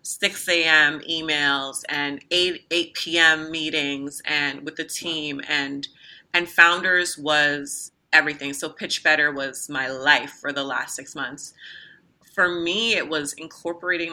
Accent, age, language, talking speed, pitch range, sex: American, 30-49, English, 140 wpm, 150-180 Hz, female